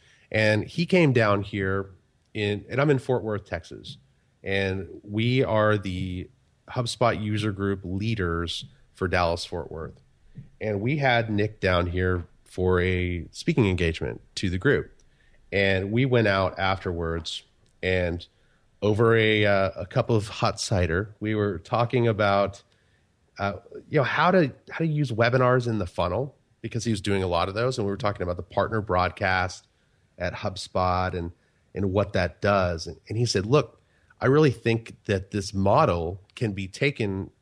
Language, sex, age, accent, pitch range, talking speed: English, male, 30-49, American, 95-115 Hz, 165 wpm